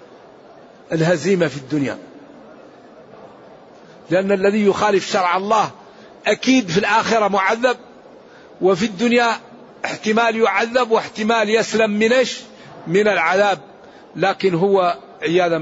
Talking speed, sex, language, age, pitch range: 90 wpm, male, Arabic, 60-79, 175-215 Hz